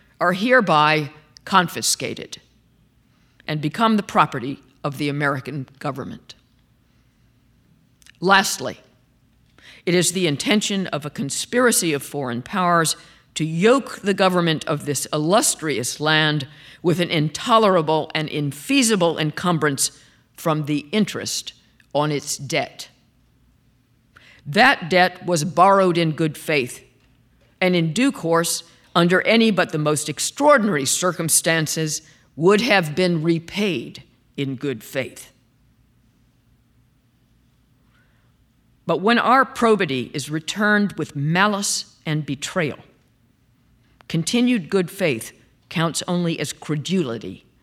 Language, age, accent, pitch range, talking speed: English, 50-69, American, 130-180 Hz, 105 wpm